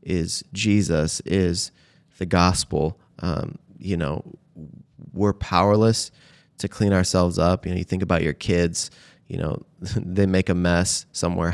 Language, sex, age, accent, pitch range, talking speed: English, male, 20-39, American, 85-95 Hz, 145 wpm